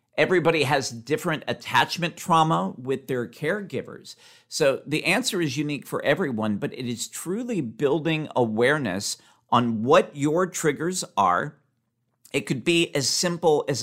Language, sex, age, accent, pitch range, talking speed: English, male, 50-69, American, 120-170 Hz, 140 wpm